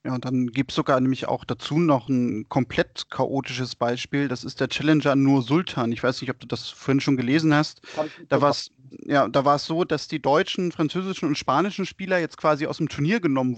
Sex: male